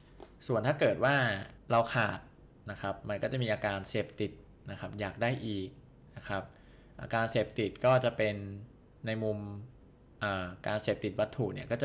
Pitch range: 100-125 Hz